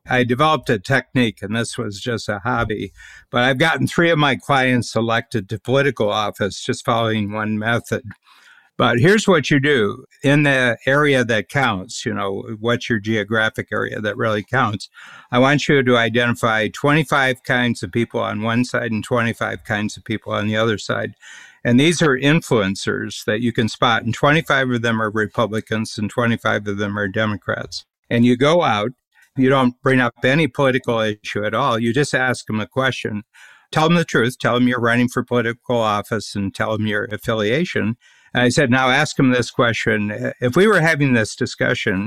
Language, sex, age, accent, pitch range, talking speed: English, male, 60-79, American, 110-130 Hz, 190 wpm